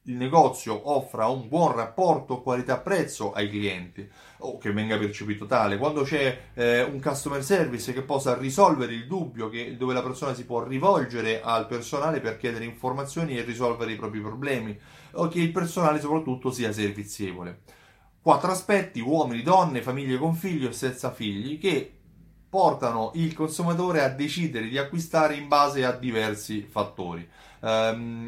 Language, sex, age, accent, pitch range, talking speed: Italian, male, 30-49, native, 110-155 Hz, 160 wpm